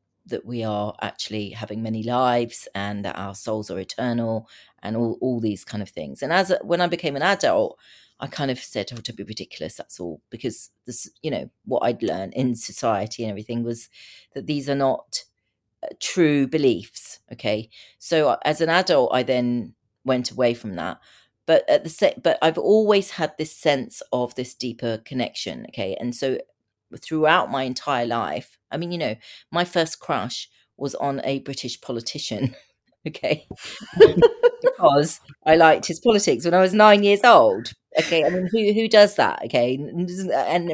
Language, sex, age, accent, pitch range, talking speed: English, female, 40-59, British, 120-170 Hz, 180 wpm